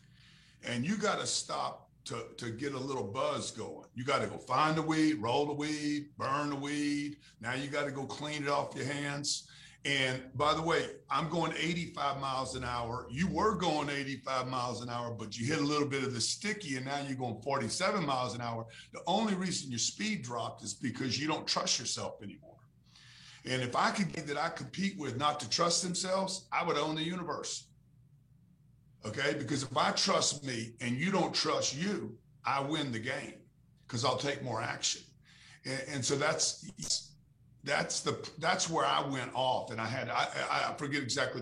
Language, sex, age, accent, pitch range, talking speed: English, male, 50-69, American, 125-155 Hz, 195 wpm